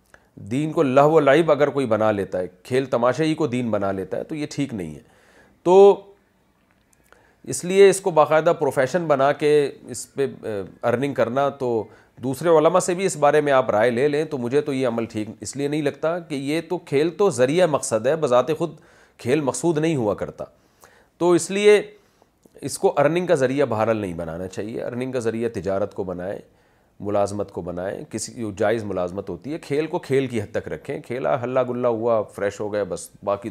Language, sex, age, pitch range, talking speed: Urdu, male, 40-59, 105-150 Hz, 210 wpm